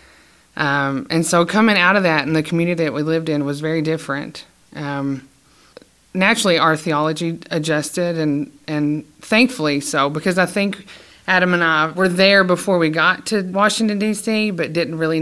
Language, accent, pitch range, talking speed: English, American, 150-175 Hz, 170 wpm